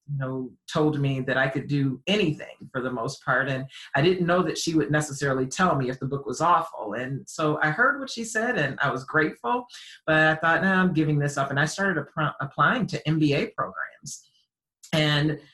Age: 40-59